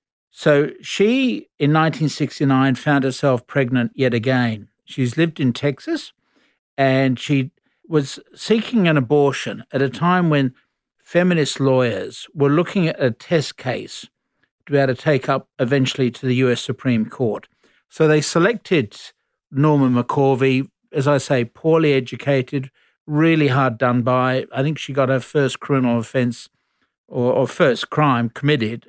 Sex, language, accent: male, English, Australian